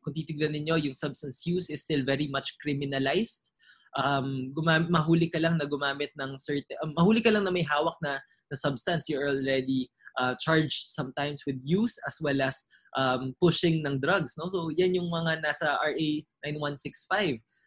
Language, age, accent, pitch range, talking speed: English, 20-39, Filipino, 140-175 Hz, 175 wpm